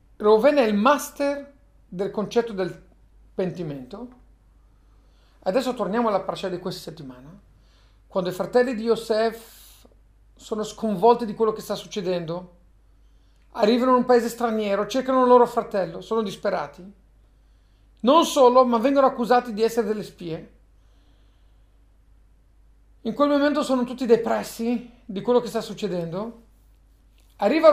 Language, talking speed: Italian, 130 wpm